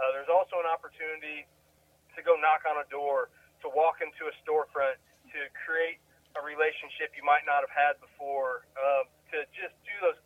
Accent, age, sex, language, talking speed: American, 20-39, male, English, 180 wpm